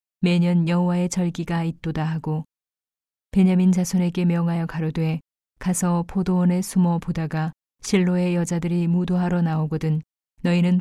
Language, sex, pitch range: Korean, female, 160-180 Hz